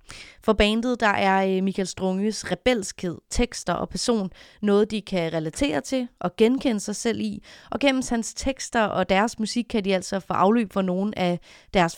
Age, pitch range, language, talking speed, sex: 30-49, 180-220 Hz, Danish, 180 wpm, female